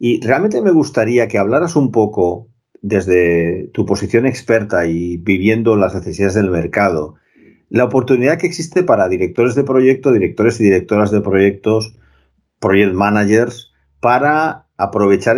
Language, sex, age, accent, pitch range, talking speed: Spanish, male, 50-69, Spanish, 95-125 Hz, 135 wpm